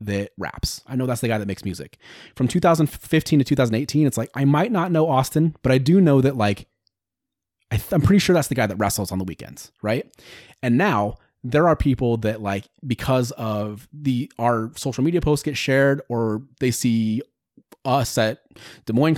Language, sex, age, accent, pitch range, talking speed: English, male, 30-49, American, 105-140 Hz, 200 wpm